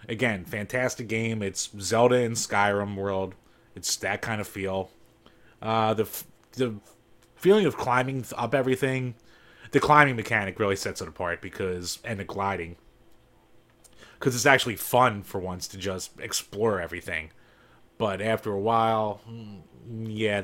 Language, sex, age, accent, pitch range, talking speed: English, male, 20-39, American, 100-125 Hz, 145 wpm